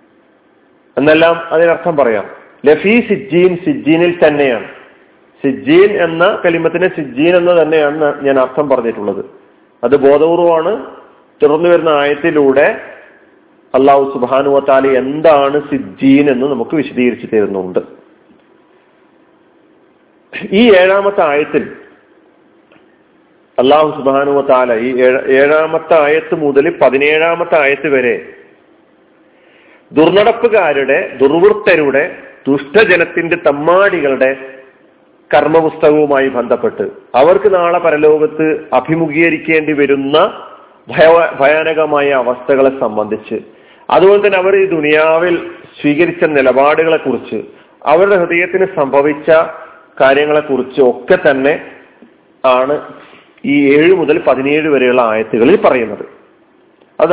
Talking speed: 80 wpm